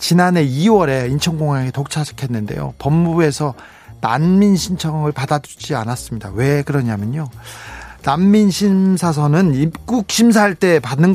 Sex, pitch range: male, 135-195 Hz